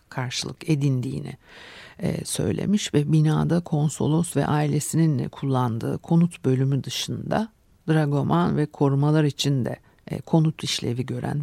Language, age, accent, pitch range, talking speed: Turkish, 60-79, native, 140-180 Hz, 100 wpm